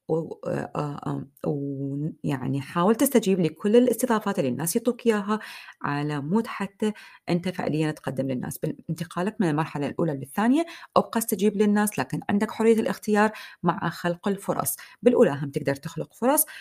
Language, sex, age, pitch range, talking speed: Arabic, female, 30-49, 155-215 Hz, 130 wpm